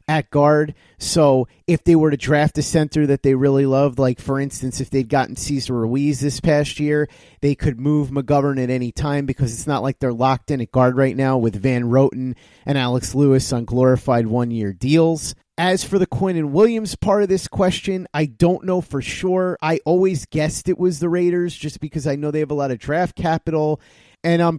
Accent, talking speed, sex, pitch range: American, 215 wpm, male, 135-160 Hz